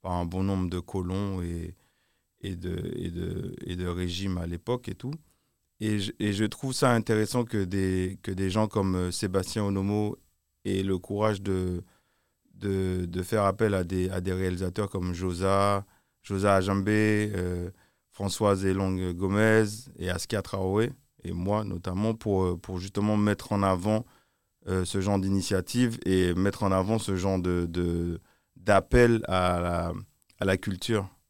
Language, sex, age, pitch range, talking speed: French, male, 30-49, 90-105 Hz, 160 wpm